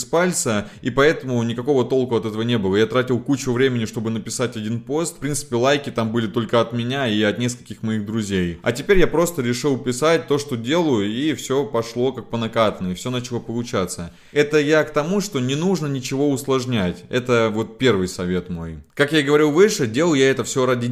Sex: male